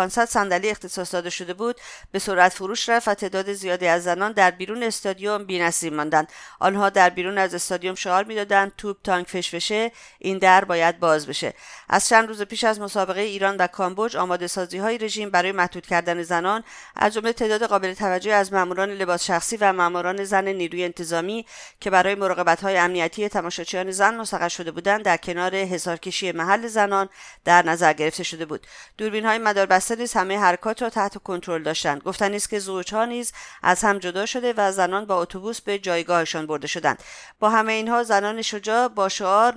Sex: female